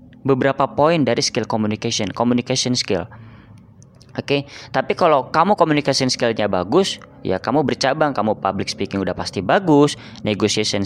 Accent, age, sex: native, 20-39, female